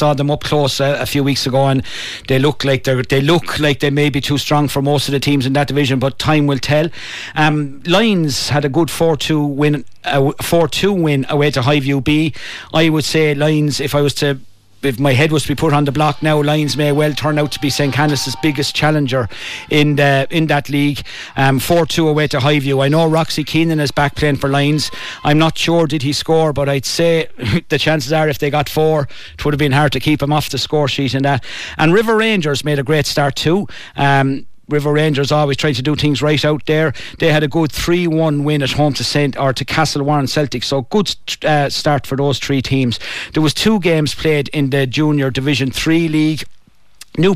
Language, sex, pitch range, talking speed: English, male, 135-155 Hz, 230 wpm